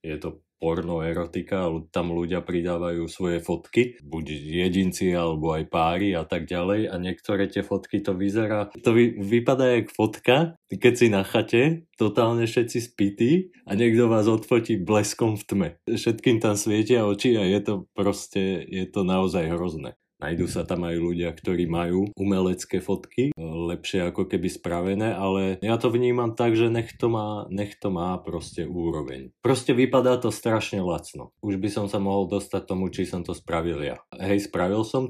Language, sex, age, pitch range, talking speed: Slovak, male, 30-49, 90-105 Hz, 175 wpm